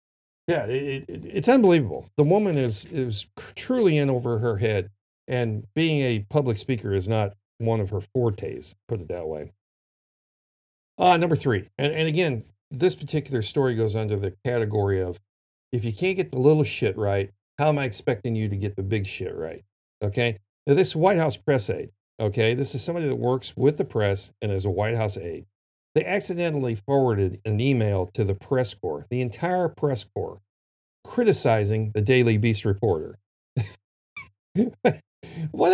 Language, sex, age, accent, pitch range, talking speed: English, male, 50-69, American, 105-150 Hz, 175 wpm